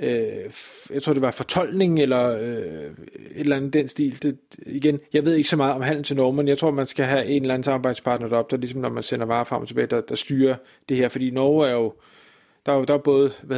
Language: Danish